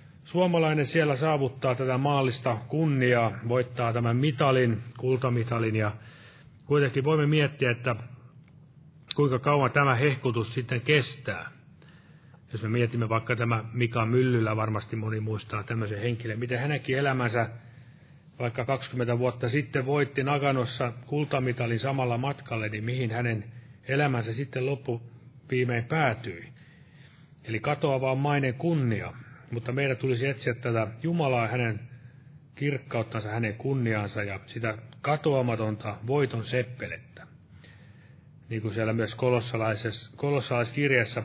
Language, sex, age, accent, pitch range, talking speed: Finnish, male, 30-49, native, 115-145 Hz, 110 wpm